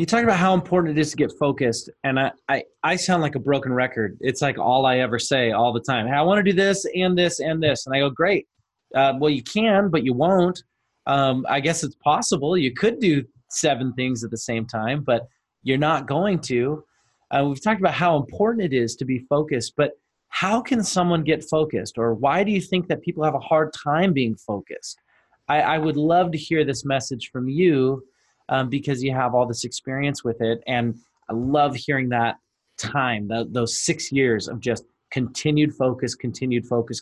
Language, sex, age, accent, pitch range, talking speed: English, male, 30-49, American, 120-160 Hz, 215 wpm